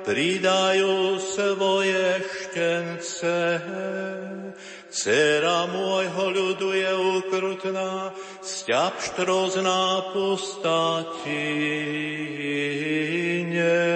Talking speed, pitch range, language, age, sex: 50 wpm, 165-190 Hz, Slovak, 60-79, male